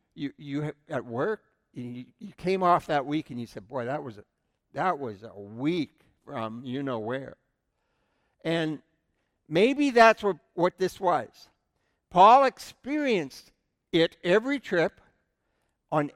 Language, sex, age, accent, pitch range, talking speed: English, male, 60-79, American, 150-205 Hz, 135 wpm